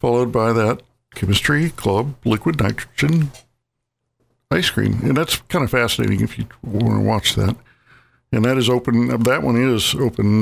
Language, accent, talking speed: English, American, 160 wpm